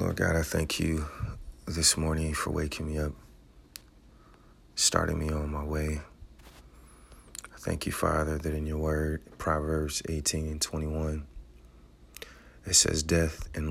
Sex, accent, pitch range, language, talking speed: male, American, 75-85 Hz, English, 140 wpm